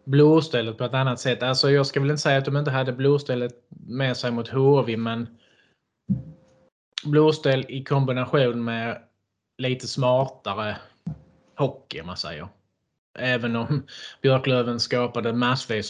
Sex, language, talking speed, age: male, Swedish, 130 wpm, 20-39